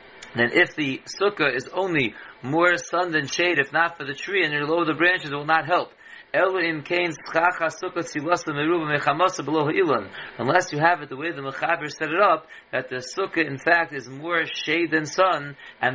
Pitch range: 145-170 Hz